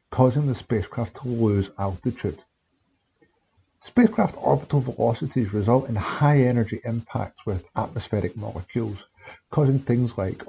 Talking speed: 115 wpm